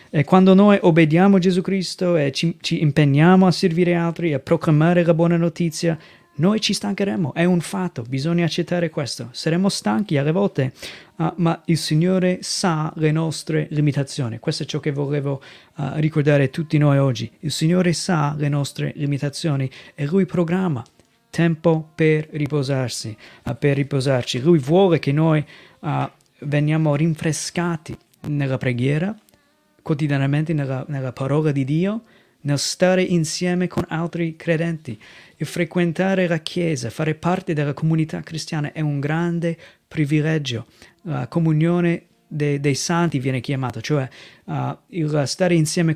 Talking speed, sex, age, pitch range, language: 145 wpm, male, 30-49, 145-170 Hz, Italian